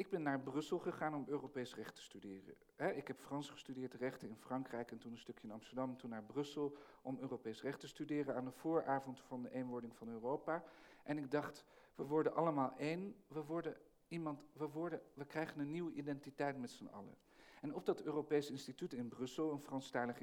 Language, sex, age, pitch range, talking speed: Dutch, male, 50-69, 125-150 Hz, 200 wpm